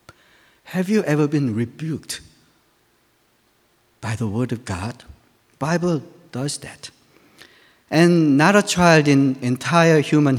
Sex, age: male, 50-69